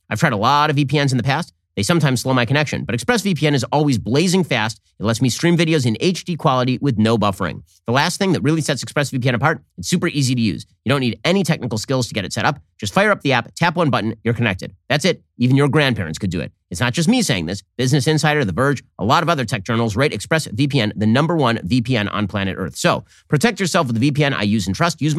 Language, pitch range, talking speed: English, 110-155 Hz, 260 wpm